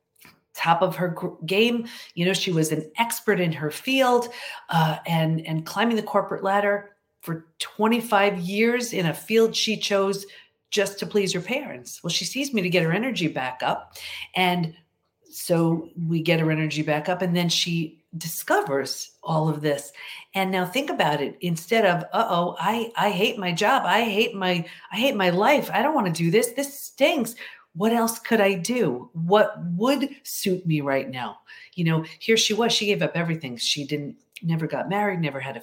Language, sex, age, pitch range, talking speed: English, female, 40-59, 160-210 Hz, 195 wpm